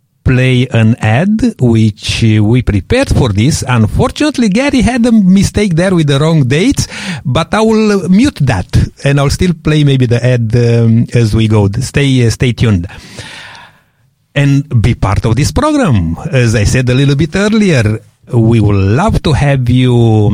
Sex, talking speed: male, 165 wpm